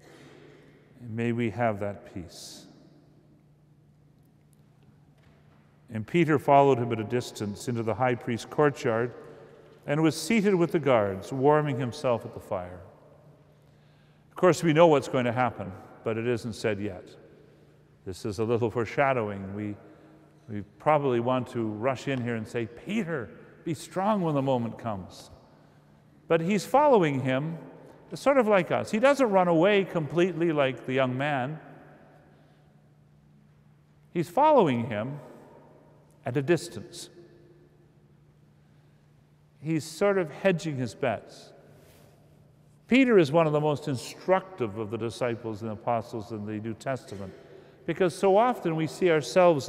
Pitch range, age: 115-165 Hz, 50-69